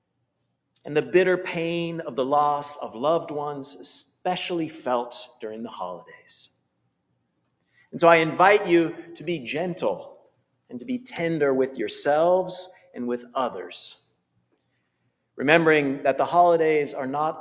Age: 40-59